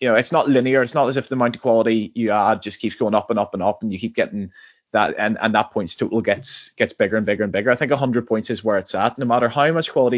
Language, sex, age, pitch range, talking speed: English, male, 20-39, 110-140 Hz, 320 wpm